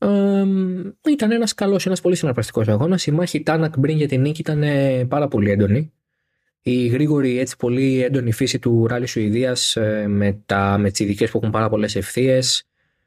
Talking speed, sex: 180 wpm, male